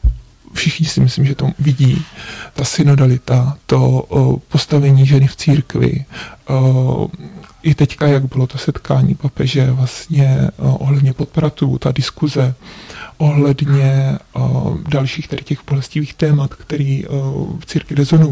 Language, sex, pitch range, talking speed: Czech, male, 140-155 Hz, 120 wpm